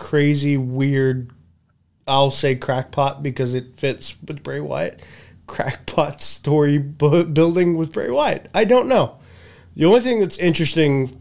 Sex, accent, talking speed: male, American, 135 wpm